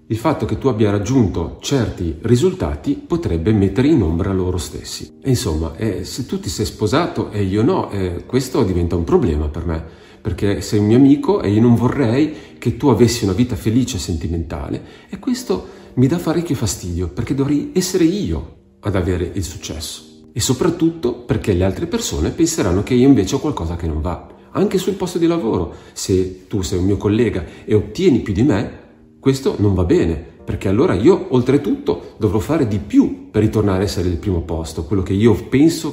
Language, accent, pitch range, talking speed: Italian, native, 85-120 Hz, 195 wpm